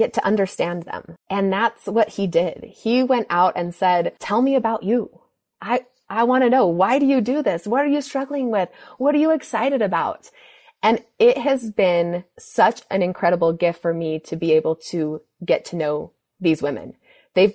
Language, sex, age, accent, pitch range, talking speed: English, female, 20-39, American, 170-250 Hz, 200 wpm